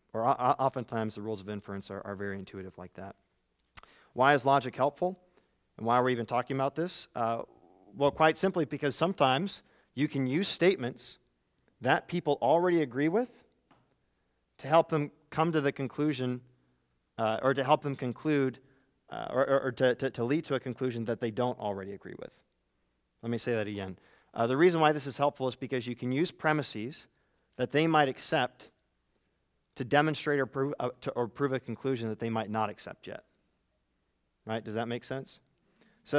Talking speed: 180 wpm